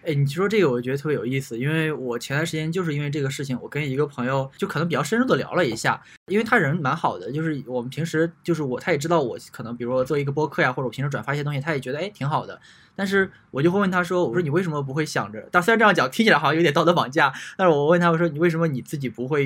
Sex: male